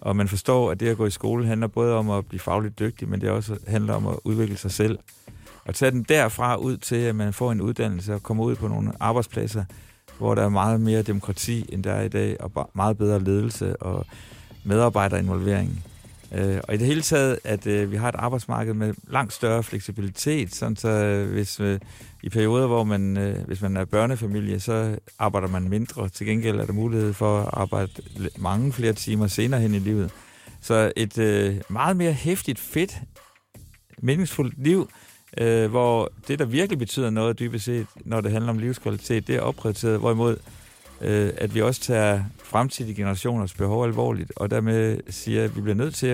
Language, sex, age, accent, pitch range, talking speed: Danish, male, 60-79, native, 105-120 Hz, 190 wpm